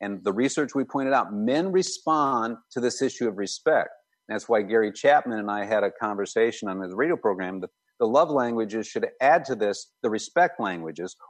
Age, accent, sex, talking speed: 50-69, American, male, 190 wpm